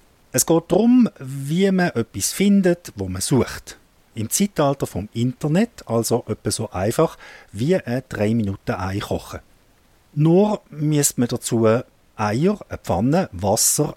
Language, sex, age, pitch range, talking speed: English, male, 50-69, 110-170 Hz, 125 wpm